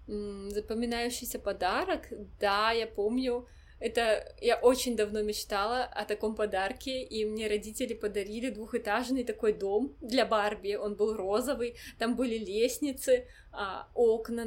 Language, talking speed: Russian, 120 wpm